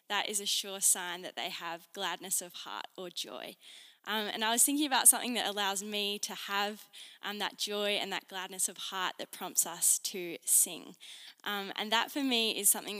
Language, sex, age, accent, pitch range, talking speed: English, female, 10-29, Australian, 185-210 Hz, 210 wpm